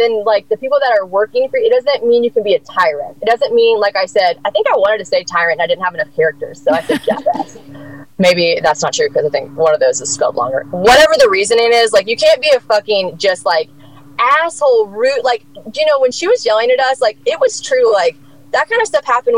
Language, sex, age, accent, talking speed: English, female, 20-39, American, 265 wpm